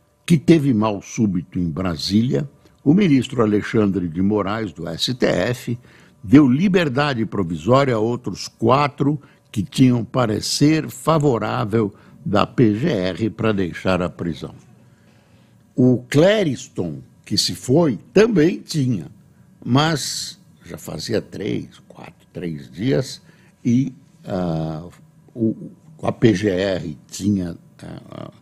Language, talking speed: Portuguese, 100 wpm